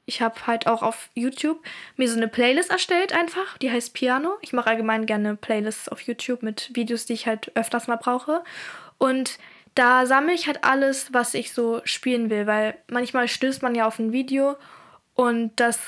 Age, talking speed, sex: 10-29, 195 wpm, female